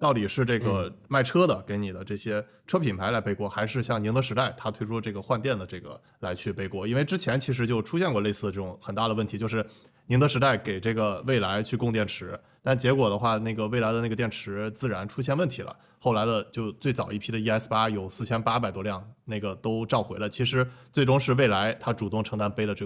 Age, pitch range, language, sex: 20-39, 105-125 Hz, Chinese, male